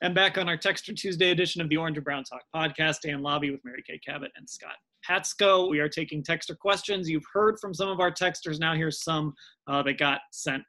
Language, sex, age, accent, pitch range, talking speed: English, male, 30-49, American, 155-200 Hz, 240 wpm